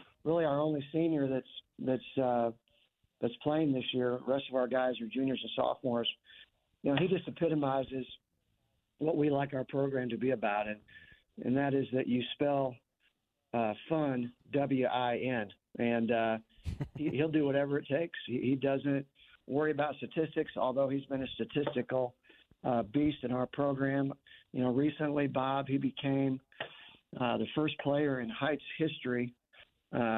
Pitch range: 120-140 Hz